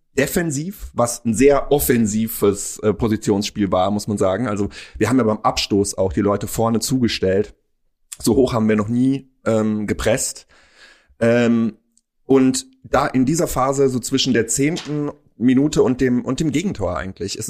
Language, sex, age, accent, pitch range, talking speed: German, male, 30-49, German, 110-130 Hz, 165 wpm